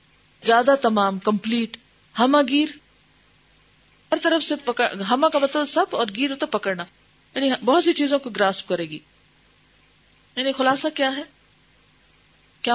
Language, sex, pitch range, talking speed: Urdu, female, 205-280 Hz, 115 wpm